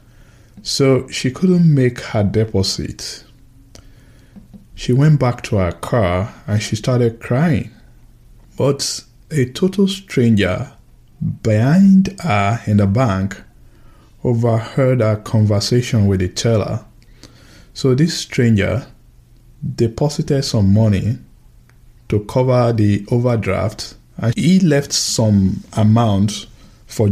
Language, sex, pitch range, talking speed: English, male, 100-125 Hz, 105 wpm